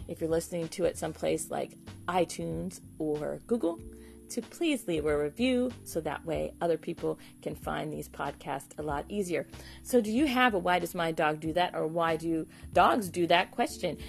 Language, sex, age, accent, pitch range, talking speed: English, female, 40-59, American, 165-255 Hz, 190 wpm